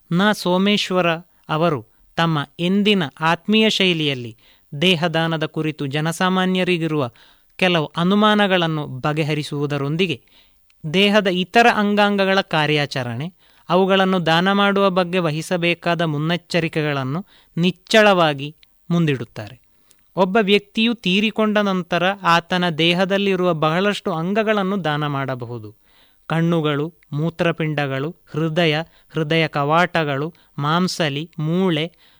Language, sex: Kannada, male